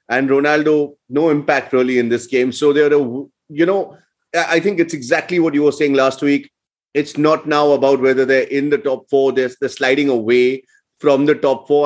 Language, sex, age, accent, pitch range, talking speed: English, male, 30-49, Indian, 130-150 Hz, 200 wpm